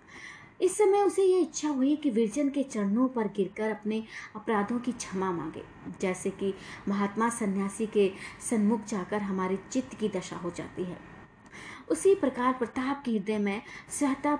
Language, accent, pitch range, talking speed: Hindi, native, 190-255 Hz, 160 wpm